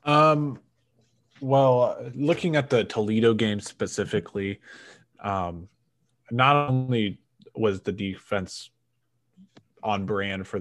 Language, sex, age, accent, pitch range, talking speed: English, male, 20-39, American, 100-120 Hz, 95 wpm